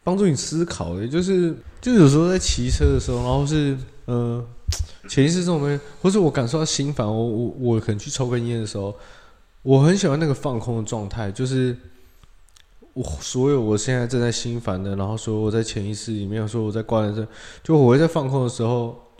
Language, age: Chinese, 20-39